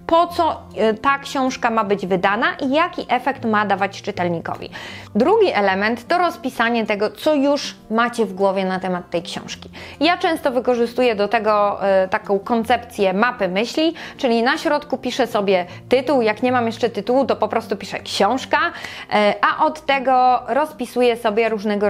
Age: 20-39